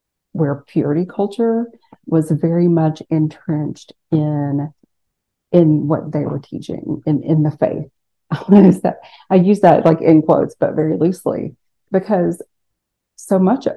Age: 40-59